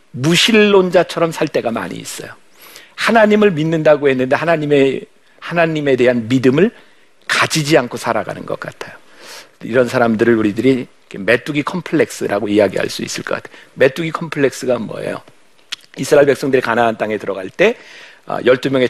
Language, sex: Korean, male